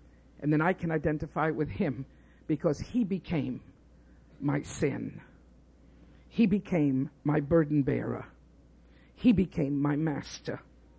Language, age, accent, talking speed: English, 60-79, American, 115 wpm